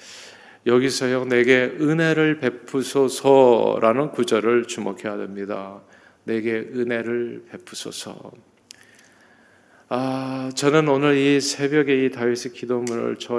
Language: Korean